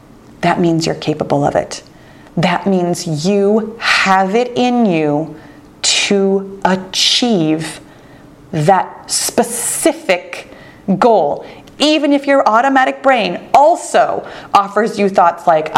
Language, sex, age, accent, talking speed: English, female, 30-49, American, 105 wpm